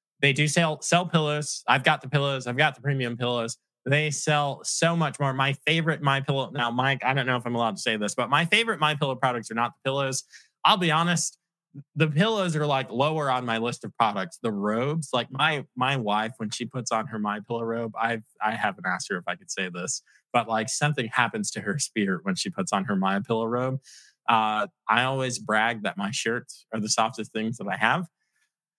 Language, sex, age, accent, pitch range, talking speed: English, male, 20-39, American, 115-150 Hz, 230 wpm